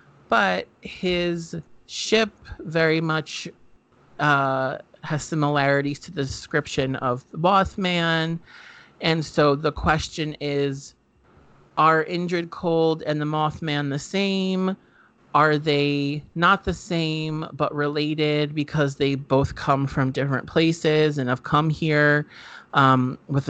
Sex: male